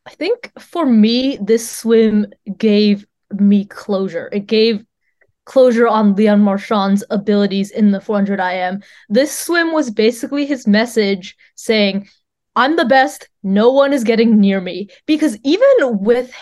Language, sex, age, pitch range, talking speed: English, female, 20-39, 205-260 Hz, 145 wpm